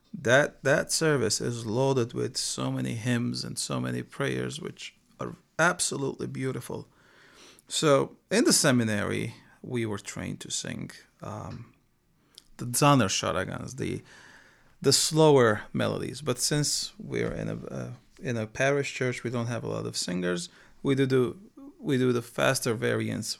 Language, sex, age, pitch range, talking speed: English, male, 30-49, 110-145 Hz, 145 wpm